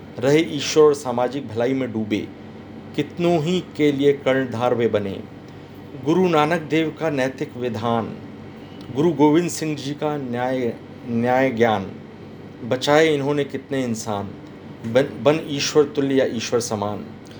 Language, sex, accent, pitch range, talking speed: Hindi, male, native, 115-145 Hz, 125 wpm